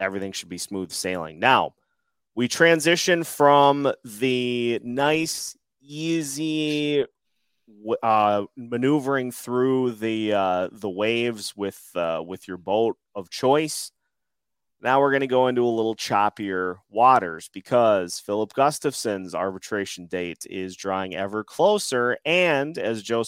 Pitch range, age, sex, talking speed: 100-145 Hz, 30-49, male, 125 wpm